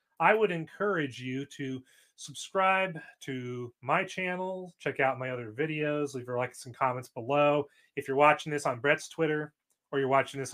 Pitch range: 135-155 Hz